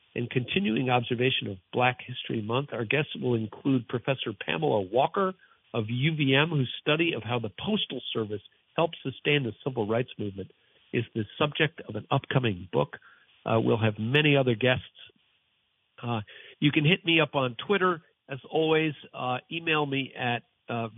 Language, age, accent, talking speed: English, 50-69, American, 165 wpm